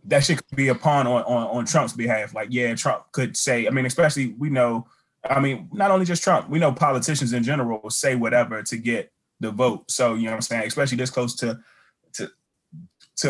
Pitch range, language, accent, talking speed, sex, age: 115-130 Hz, English, American, 230 wpm, male, 20-39